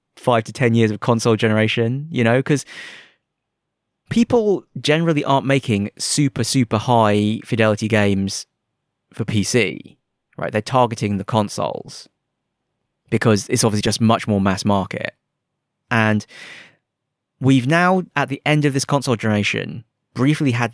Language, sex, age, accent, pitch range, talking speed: English, male, 20-39, British, 105-130 Hz, 135 wpm